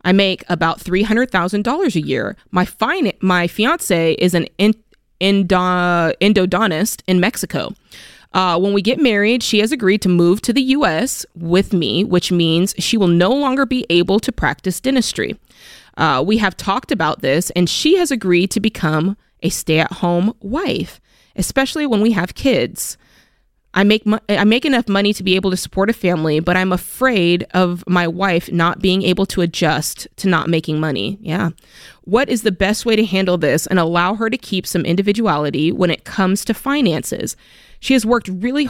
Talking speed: 175 wpm